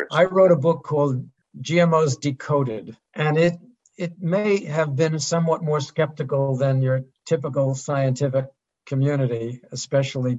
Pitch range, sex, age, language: 135-165 Hz, male, 60-79, English